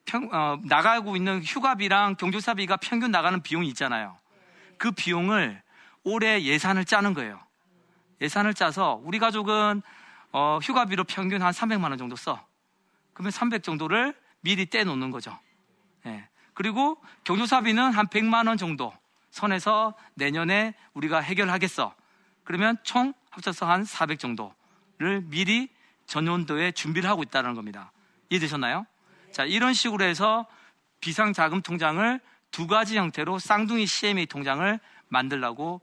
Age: 40-59